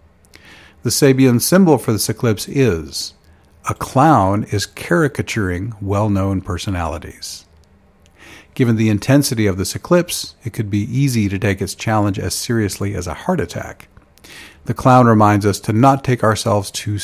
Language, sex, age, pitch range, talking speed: English, male, 50-69, 95-115 Hz, 150 wpm